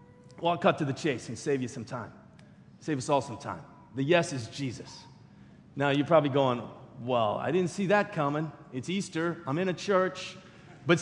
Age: 30-49